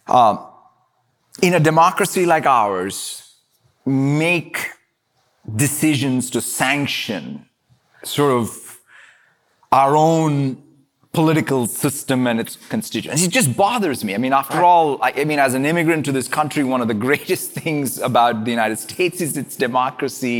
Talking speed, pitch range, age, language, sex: 140 wpm, 135-180 Hz, 30-49, English, male